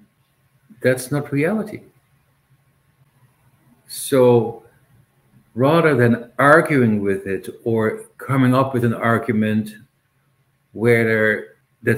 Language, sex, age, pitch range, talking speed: English, male, 60-79, 120-135 Hz, 85 wpm